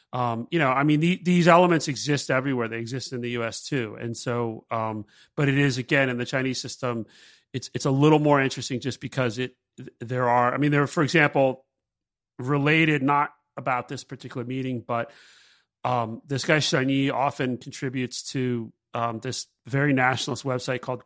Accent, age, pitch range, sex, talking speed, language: American, 30-49, 120-140 Hz, male, 185 wpm, English